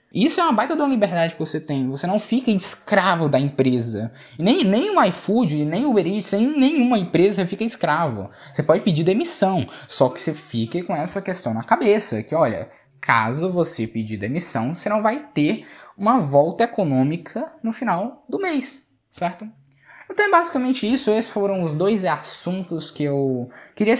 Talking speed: 175 wpm